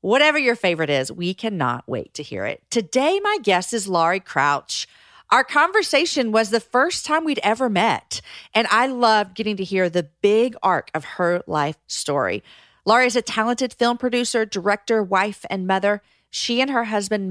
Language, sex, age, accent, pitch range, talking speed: English, female, 40-59, American, 185-250 Hz, 180 wpm